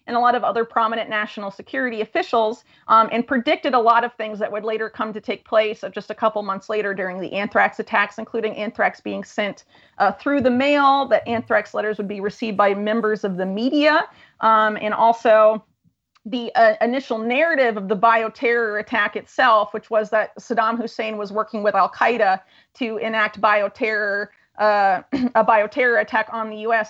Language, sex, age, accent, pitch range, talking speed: English, female, 30-49, American, 205-235 Hz, 185 wpm